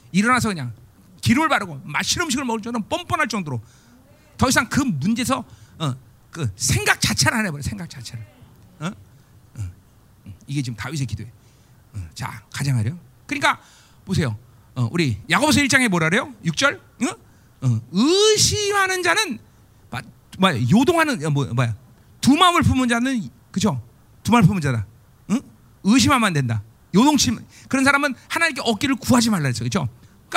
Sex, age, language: male, 40-59, Korean